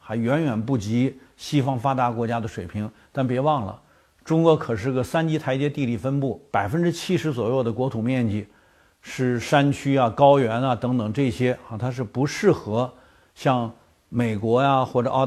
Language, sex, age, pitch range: Chinese, male, 50-69, 115-140 Hz